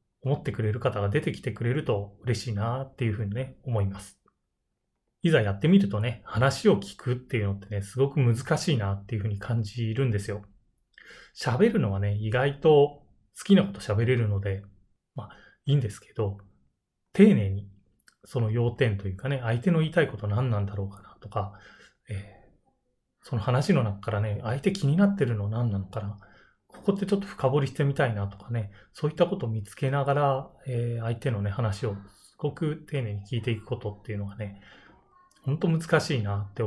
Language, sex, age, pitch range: Japanese, male, 20-39, 105-135 Hz